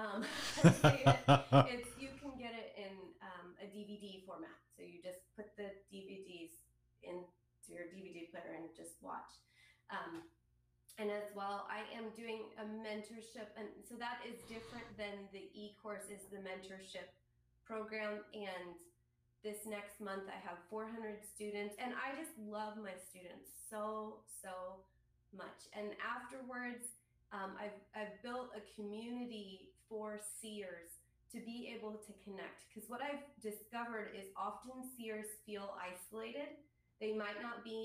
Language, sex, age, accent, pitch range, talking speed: English, female, 20-39, American, 190-220 Hz, 145 wpm